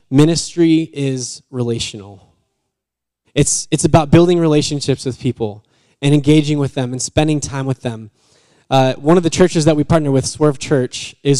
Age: 10-29